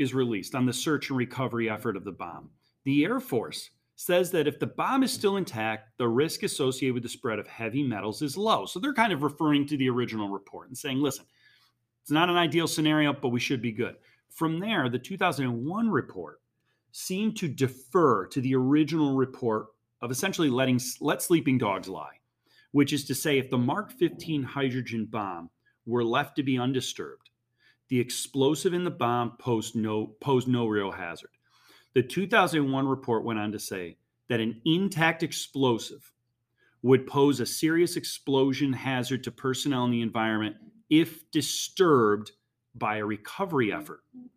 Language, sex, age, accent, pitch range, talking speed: English, male, 40-59, American, 120-155 Hz, 170 wpm